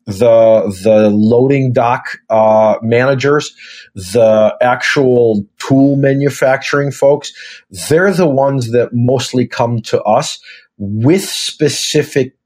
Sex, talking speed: male, 100 wpm